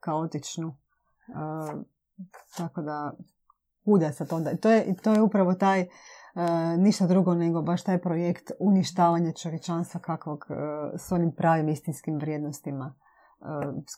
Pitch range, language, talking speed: 155-180 Hz, Croatian, 135 wpm